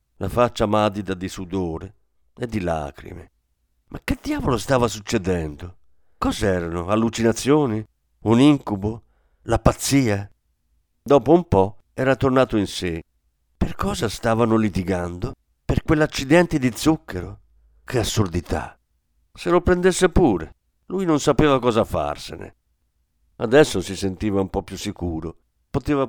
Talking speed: 120 wpm